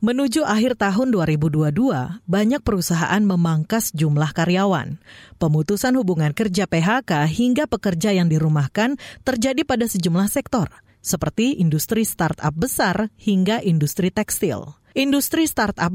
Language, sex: Indonesian, female